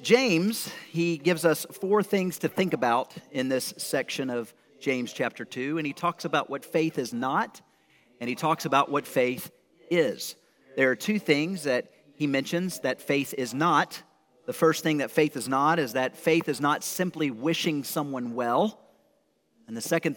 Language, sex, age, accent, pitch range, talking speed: English, male, 40-59, American, 135-165 Hz, 180 wpm